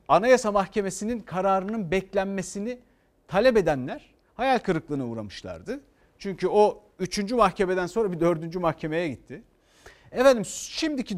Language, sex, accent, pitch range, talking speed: Turkish, male, native, 165-235 Hz, 105 wpm